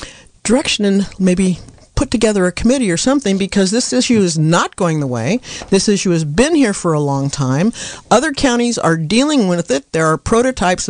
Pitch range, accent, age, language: 160-215 Hz, American, 50-69, English